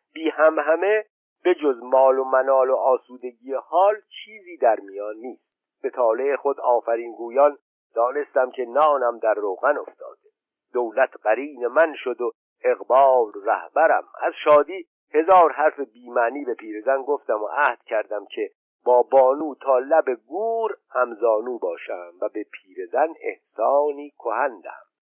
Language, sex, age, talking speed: Persian, male, 50-69, 135 wpm